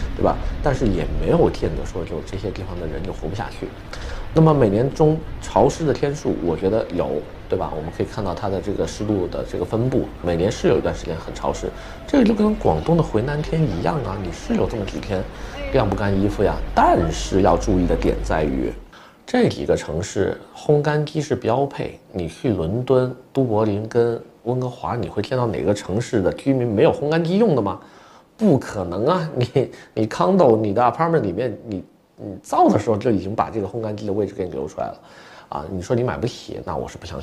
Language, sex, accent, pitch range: Chinese, male, native, 90-135 Hz